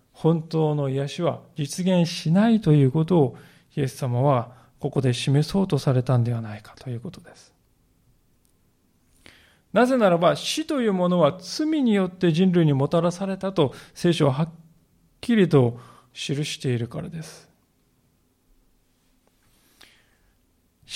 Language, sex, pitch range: Japanese, male, 140-190 Hz